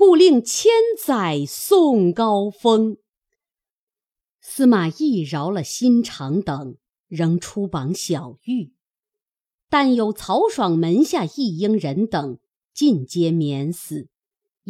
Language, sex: Chinese, female